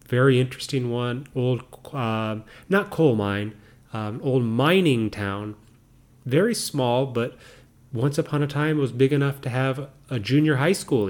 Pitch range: 115-145 Hz